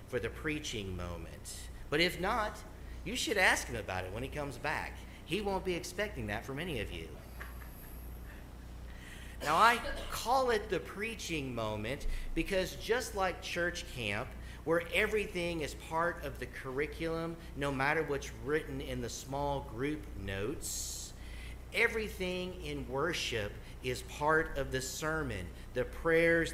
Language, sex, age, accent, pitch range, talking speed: English, male, 50-69, American, 115-155 Hz, 145 wpm